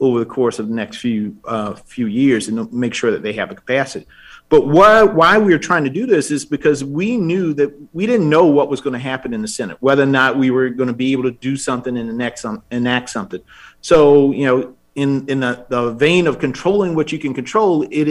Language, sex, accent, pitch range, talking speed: English, male, American, 130-170 Hz, 245 wpm